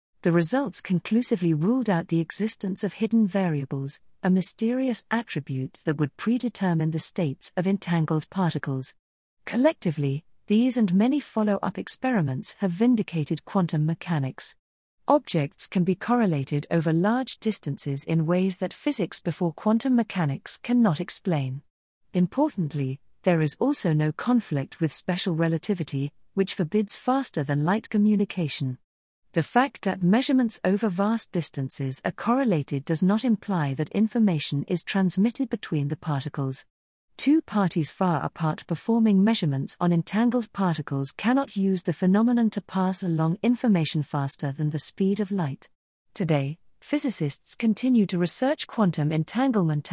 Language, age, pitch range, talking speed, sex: English, 50-69, 155-220 Hz, 130 wpm, female